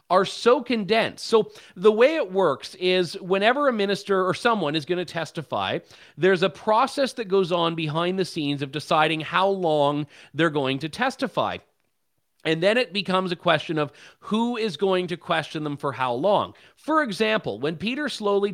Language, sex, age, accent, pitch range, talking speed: English, male, 30-49, American, 150-200 Hz, 180 wpm